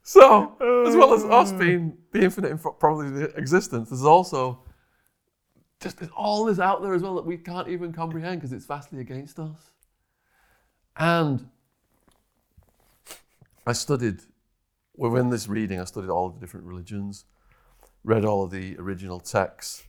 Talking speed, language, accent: 150 wpm, English, British